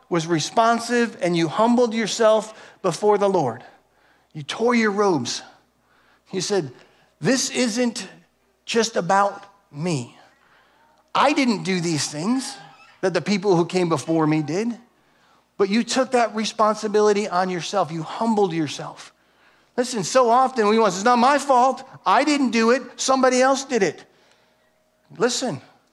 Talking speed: 140 wpm